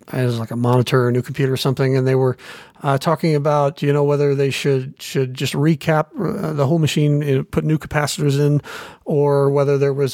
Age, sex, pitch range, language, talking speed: 40-59, male, 135-160 Hz, English, 230 wpm